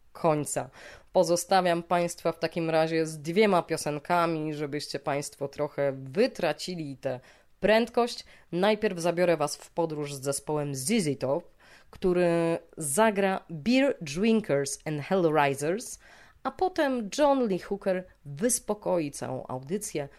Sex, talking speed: female, 110 wpm